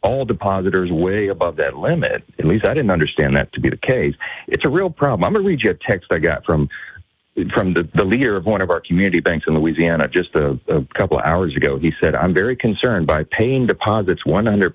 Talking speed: 230 wpm